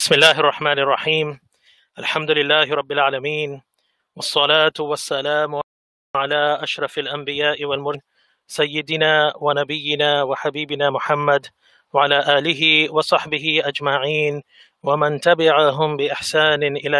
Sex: male